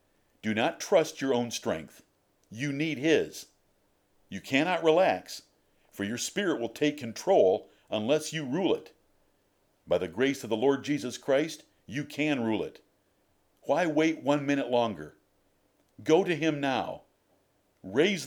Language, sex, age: English, male, 50-69